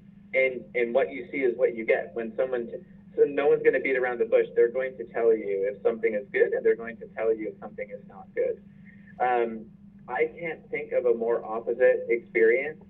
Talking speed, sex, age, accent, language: 230 wpm, male, 30-49, American, English